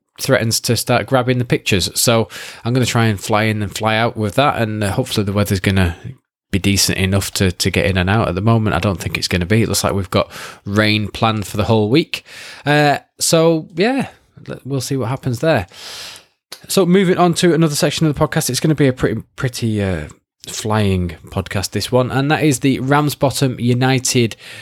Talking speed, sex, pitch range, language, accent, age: 215 wpm, male, 105-140 Hz, English, British, 20-39